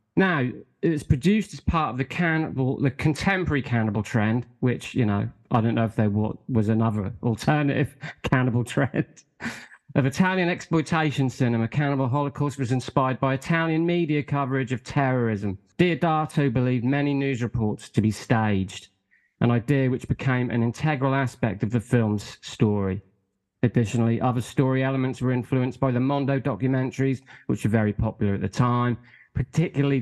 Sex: male